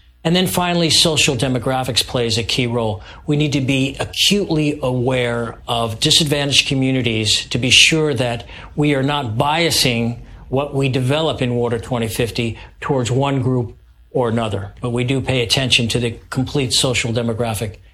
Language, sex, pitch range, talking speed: English, male, 115-150 Hz, 155 wpm